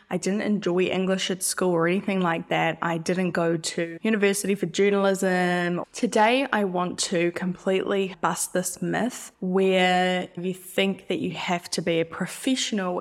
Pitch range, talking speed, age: 175-215 Hz, 160 wpm, 10-29